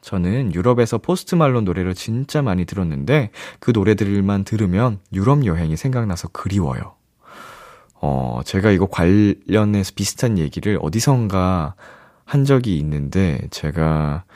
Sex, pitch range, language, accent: male, 90-130 Hz, Korean, native